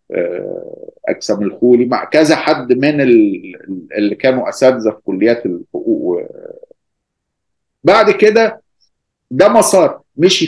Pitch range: 120-160 Hz